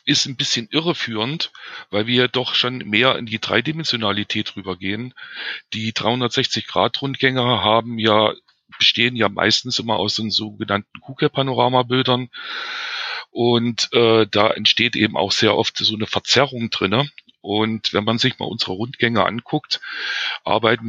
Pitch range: 105-135 Hz